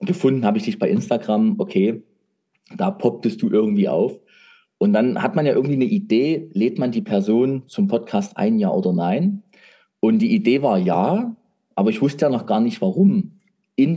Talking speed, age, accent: 190 wpm, 30-49, German